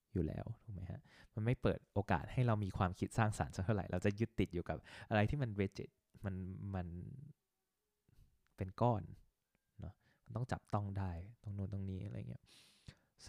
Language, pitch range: Thai, 95-115 Hz